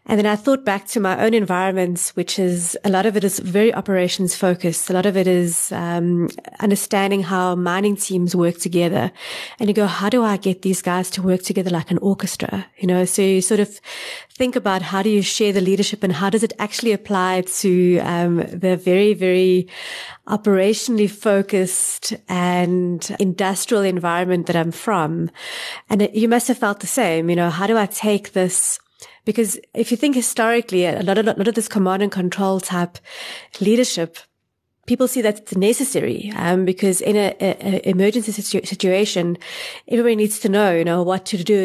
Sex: female